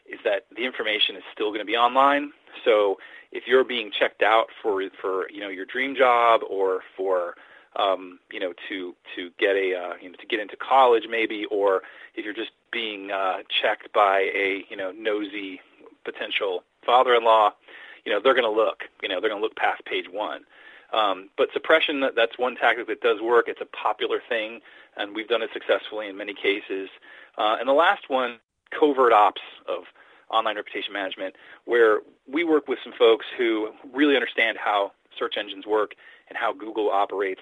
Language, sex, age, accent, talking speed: English, male, 40-59, American, 190 wpm